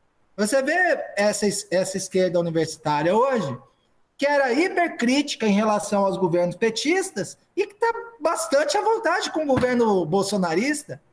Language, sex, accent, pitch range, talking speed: Portuguese, male, Brazilian, 175-245 Hz, 135 wpm